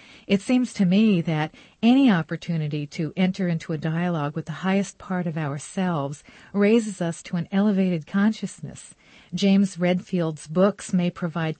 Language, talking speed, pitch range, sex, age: English, 150 wpm, 160-200 Hz, female, 50-69